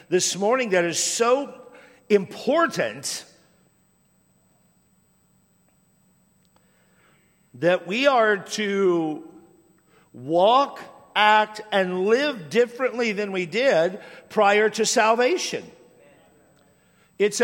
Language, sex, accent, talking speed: English, male, American, 75 wpm